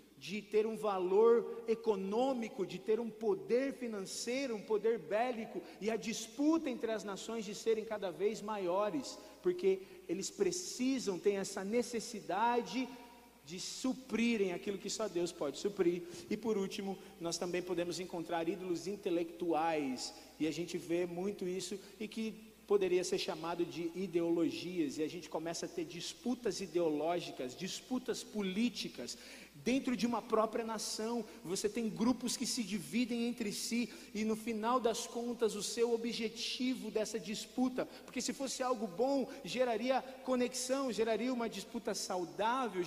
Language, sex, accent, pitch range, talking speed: Portuguese, male, Brazilian, 195-240 Hz, 145 wpm